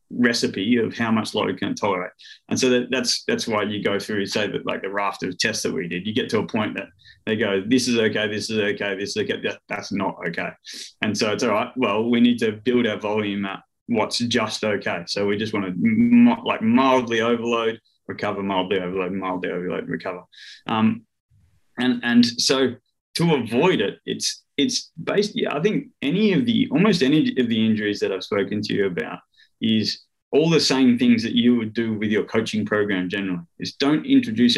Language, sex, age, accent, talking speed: English, male, 20-39, Australian, 205 wpm